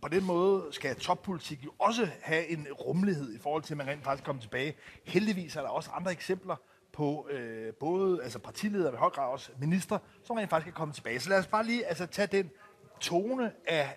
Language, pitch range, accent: Danish, 145-195 Hz, native